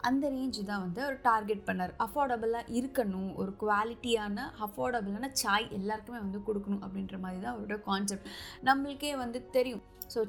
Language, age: Tamil, 20-39